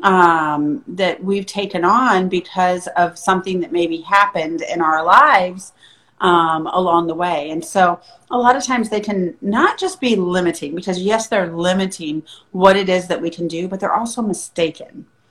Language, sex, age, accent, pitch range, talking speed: English, female, 40-59, American, 165-210 Hz, 175 wpm